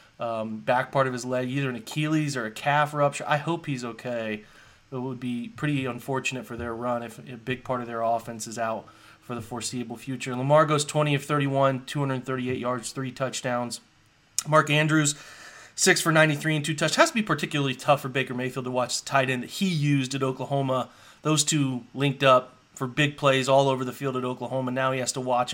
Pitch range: 125-140 Hz